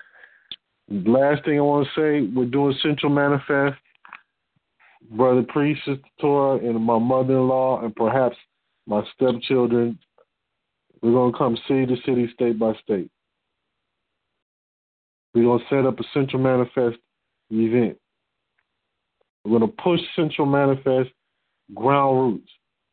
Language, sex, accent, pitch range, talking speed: English, male, American, 125-160 Hz, 125 wpm